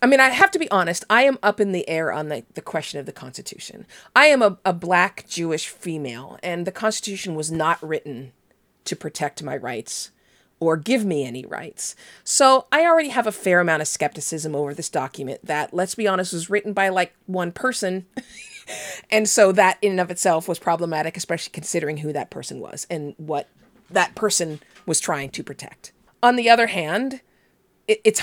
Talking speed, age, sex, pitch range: 195 wpm, 40-59, female, 160-220 Hz